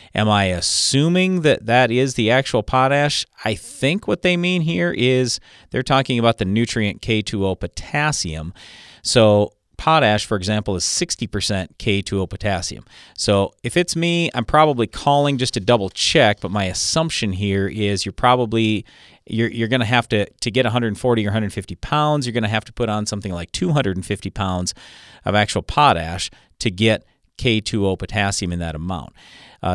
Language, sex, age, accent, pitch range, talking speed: English, male, 40-59, American, 95-120 Hz, 165 wpm